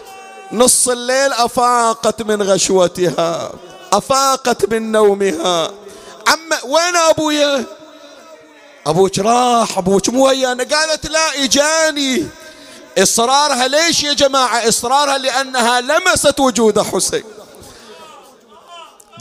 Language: Arabic